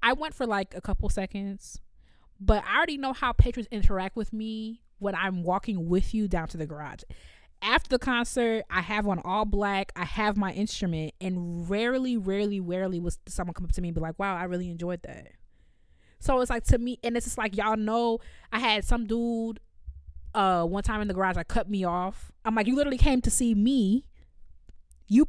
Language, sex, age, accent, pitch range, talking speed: English, female, 20-39, American, 175-225 Hz, 210 wpm